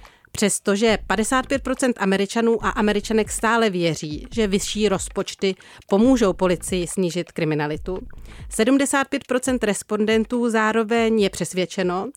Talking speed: 95 wpm